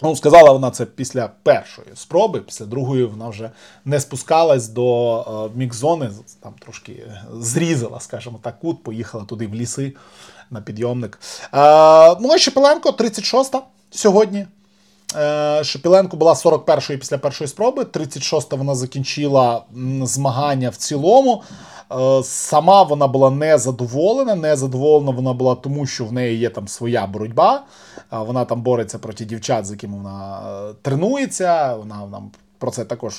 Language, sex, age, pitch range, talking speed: Ukrainian, male, 20-39, 115-150 Hz, 140 wpm